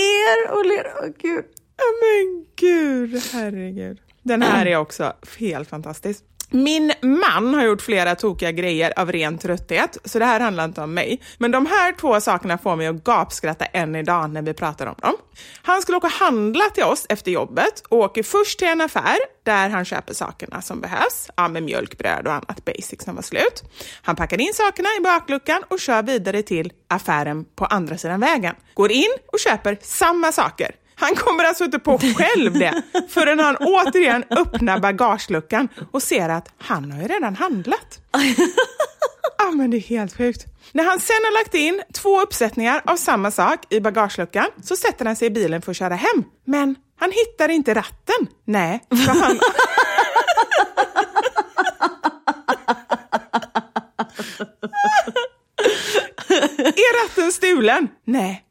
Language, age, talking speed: Swedish, 30-49, 165 wpm